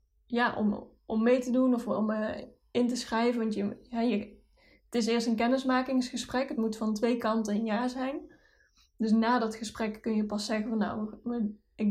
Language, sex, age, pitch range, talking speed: Dutch, female, 20-39, 210-245 Hz, 200 wpm